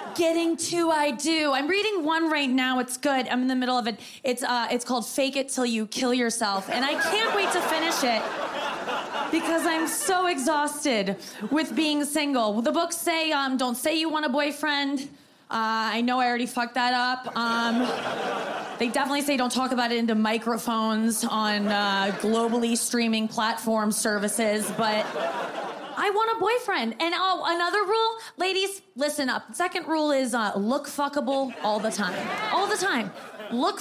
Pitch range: 240-345 Hz